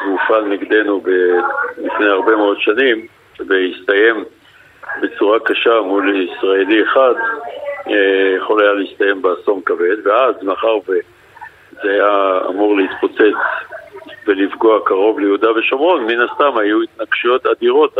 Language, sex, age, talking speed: Hebrew, male, 50-69, 105 wpm